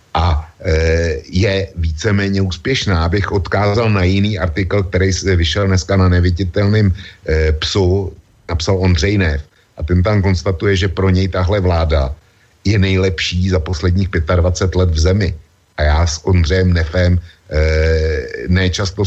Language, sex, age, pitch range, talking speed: Slovak, male, 60-79, 85-100 Hz, 140 wpm